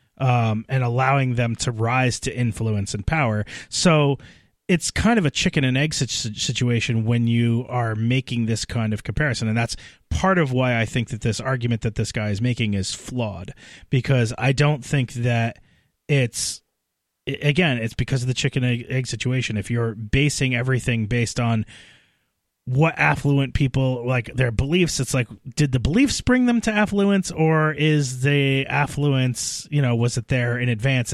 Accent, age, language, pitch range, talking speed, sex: American, 30-49, English, 115-140 Hz, 175 wpm, male